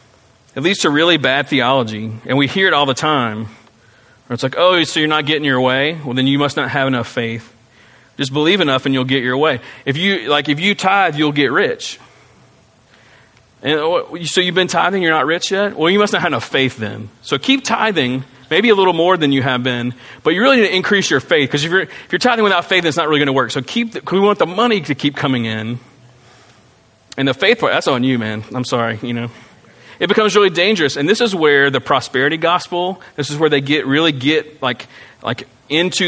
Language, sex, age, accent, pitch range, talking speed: English, male, 40-59, American, 130-165 Hz, 235 wpm